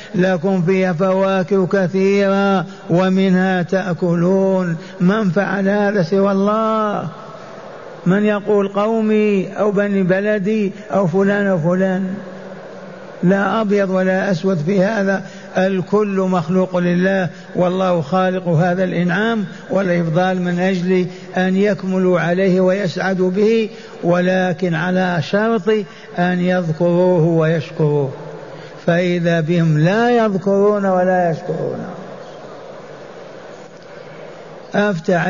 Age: 60-79